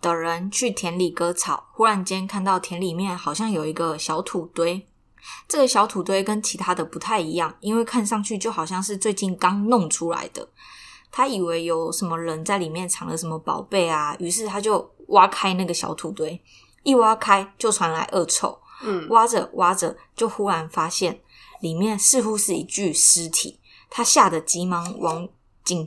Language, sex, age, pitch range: Chinese, female, 20-39, 170-215 Hz